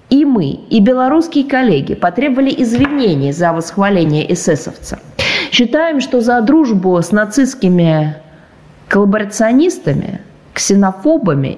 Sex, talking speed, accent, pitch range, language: female, 95 wpm, native, 170-240 Hz, Russian